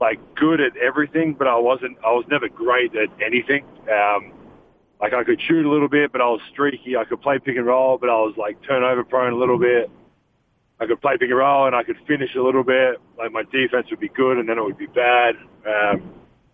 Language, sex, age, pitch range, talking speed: English, male, 40-59, 120-160 Hz, 235 wpm